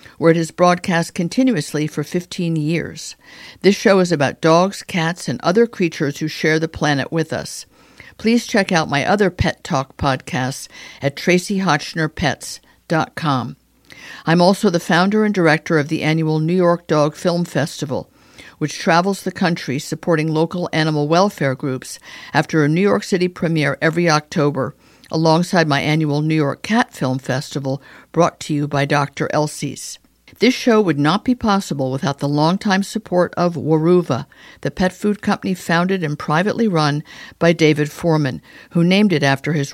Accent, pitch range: American, 150-185 Hz